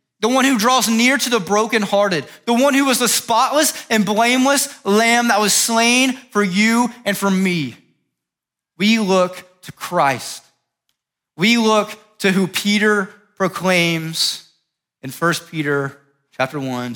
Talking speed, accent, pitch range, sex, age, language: 140 wpm, American, 120-180 Hz, male, 20-39, English